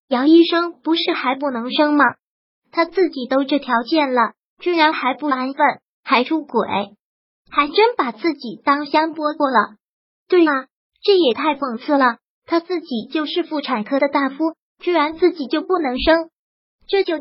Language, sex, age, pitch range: Chinese, male, 20-39, 270-335 Hz